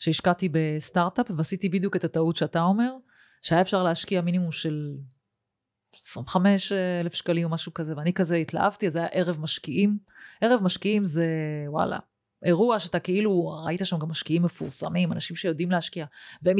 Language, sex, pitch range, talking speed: Hebrew, female, 160-190 Hz, 155 wpm